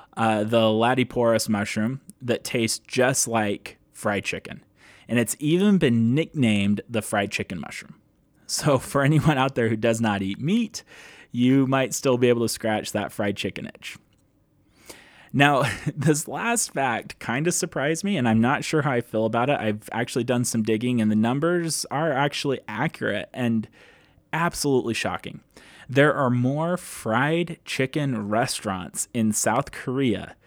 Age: 20-39